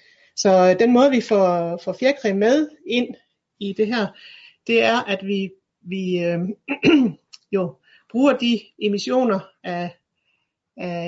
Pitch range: 170-215 Hz